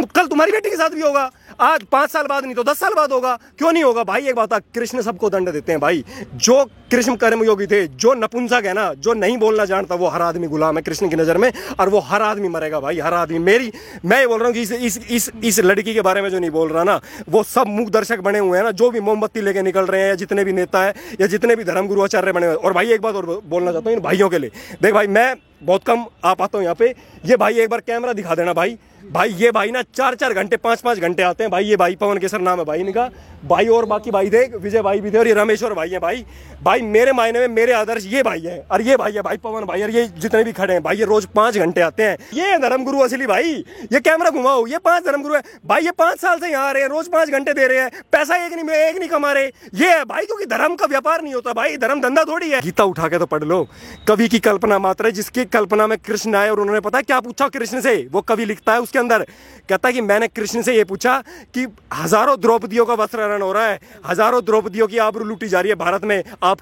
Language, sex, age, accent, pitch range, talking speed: Hindi, male, 30-49, native, 195-250 Hz, 250 wpm